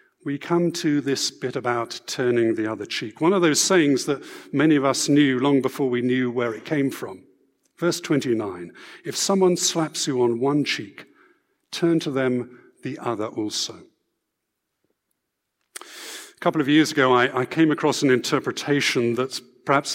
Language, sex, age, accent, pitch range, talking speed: English, male, 50-69, British, 125-155 Hz, 165 wpm